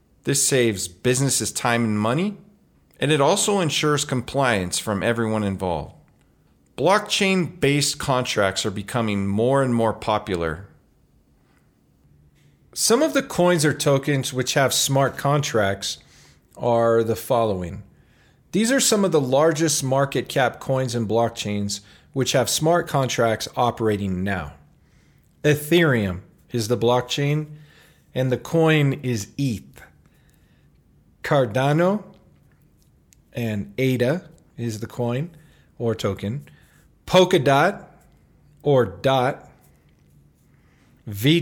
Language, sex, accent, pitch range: English, male, American, 110-155 Hz